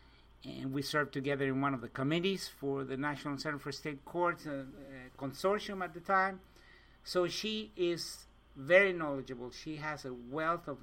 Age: 50-69